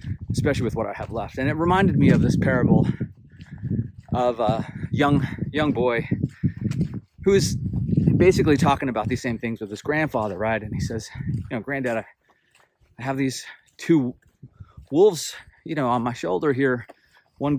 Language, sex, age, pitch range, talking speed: English, male, 30-49, 115-140 Hz, 165 wpm